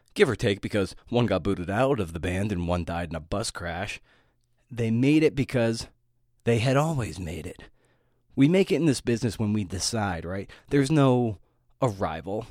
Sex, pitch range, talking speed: male, 95-135 Hz, 190 wpm